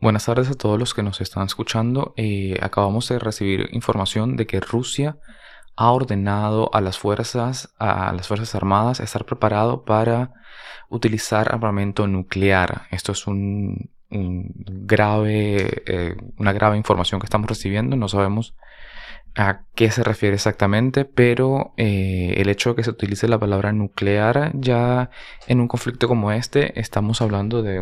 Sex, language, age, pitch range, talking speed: male, English, 20-39, 100-115 Hz, 155 wpm